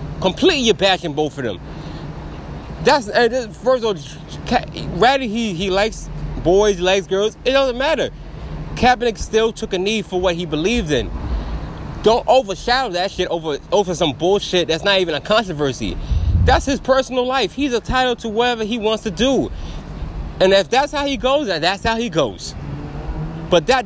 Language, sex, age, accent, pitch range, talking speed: English, male, 20-39, American, 155-235 Hz, 175 wpm